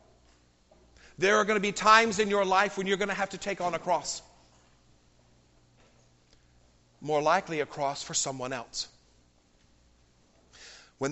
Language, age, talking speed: English, 50-69, 145 wpm